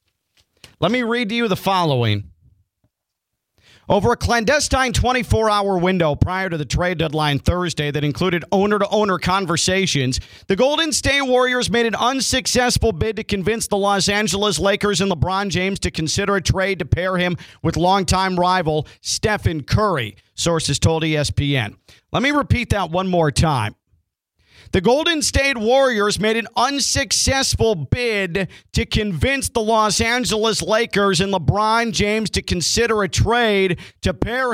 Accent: American